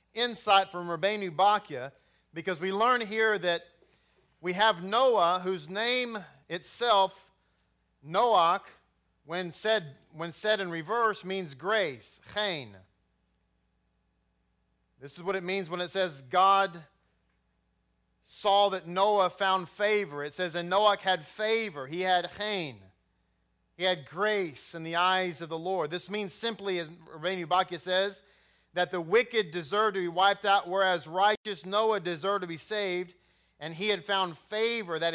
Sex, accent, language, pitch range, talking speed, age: male, American, English, 160-200 Hz, 145 wpm, 40-59